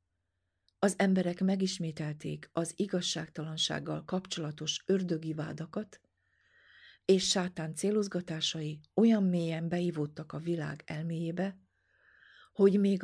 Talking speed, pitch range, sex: 85 wpm, 150-185 Hz, female